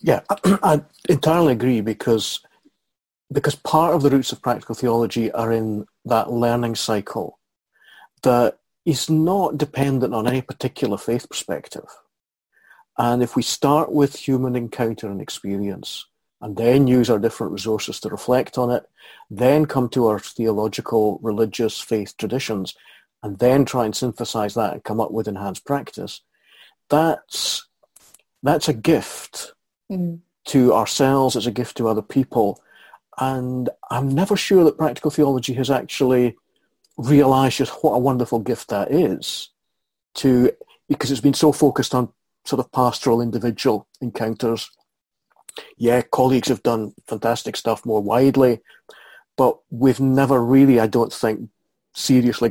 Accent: British